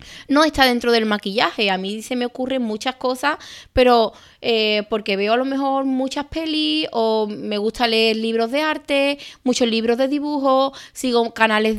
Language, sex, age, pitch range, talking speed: Spanish, female, 20-39, 225-285 Hz, 175 wpm